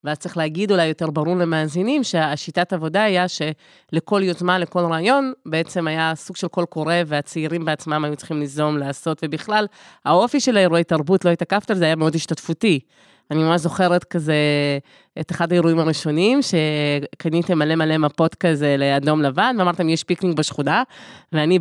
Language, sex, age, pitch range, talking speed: Hebrew, female, 20-39, 155-185 Hz, 160 wpm